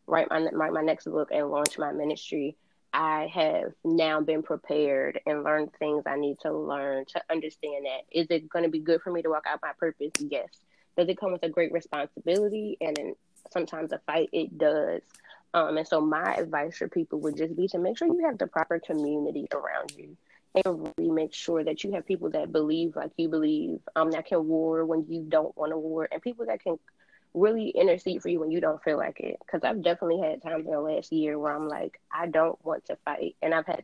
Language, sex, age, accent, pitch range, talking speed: English, female, 20-39, American, 155-170 Hz, 235 wpm